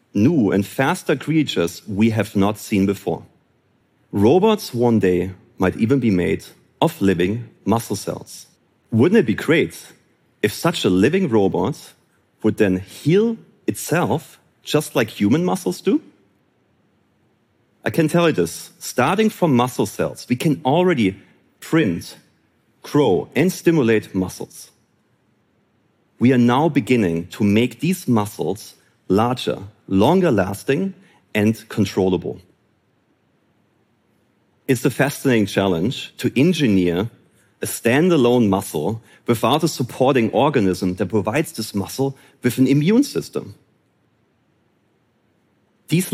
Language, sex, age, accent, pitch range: Korean, male, 40-59, German, 100-150 Hz